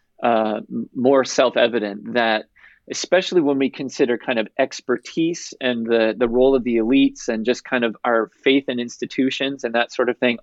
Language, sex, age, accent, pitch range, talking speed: English, male, 40-59, American, 120-140 Hz, 180 wpm